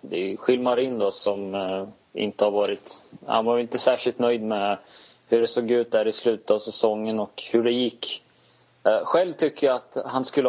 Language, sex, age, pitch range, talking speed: Swedish, male, 20-39, 110-130 Hz, 185 wpm